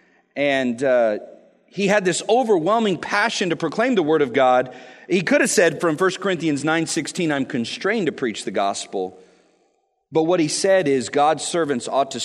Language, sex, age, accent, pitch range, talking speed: English, male, 40-59, American, 135-195 Hz, 175 wpm